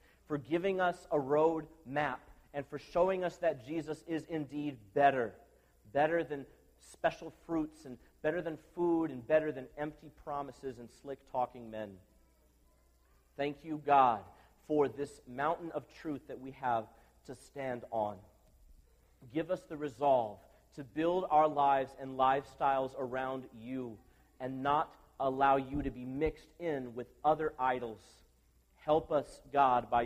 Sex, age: male, 40-59